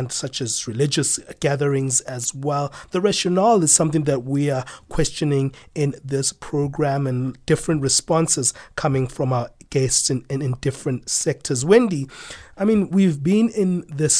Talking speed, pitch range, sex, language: 150 wpm, 130-165 Hz, male, English